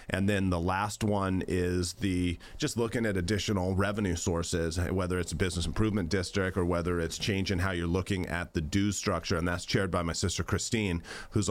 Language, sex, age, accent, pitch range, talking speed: English, male, 30-49, American, 90-110 Hz, 200 wpm